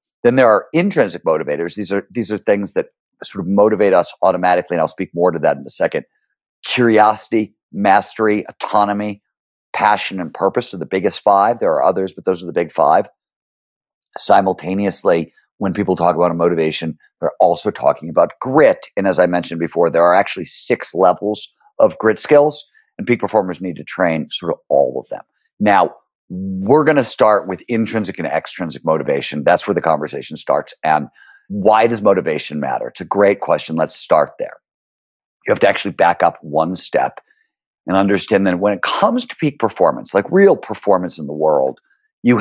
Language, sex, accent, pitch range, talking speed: English, male, American, 90-135 Hz, 185 wpm